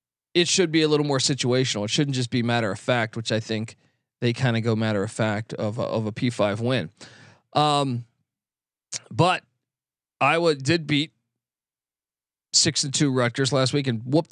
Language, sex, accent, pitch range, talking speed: English, male, American, 120-155 Hz, 180 wpm